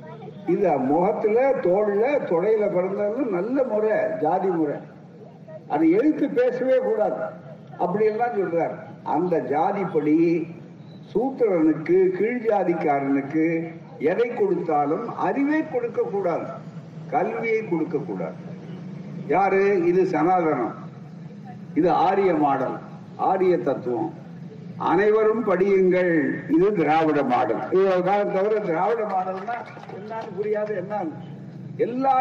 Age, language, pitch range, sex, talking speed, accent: 60-79, Tamil, 160-205 Hz, male, 75 wpm, native